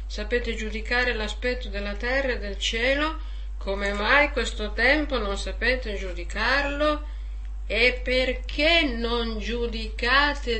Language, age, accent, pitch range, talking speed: Italian, 50-69, native, 165-245 Hz, 110 wpm